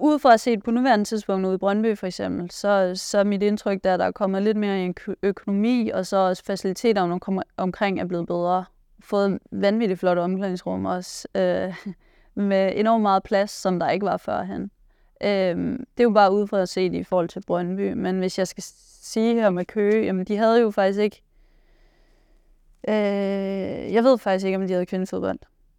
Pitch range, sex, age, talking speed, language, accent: 185-210 Hz, female, 20-39, 200 wpm, Danish, native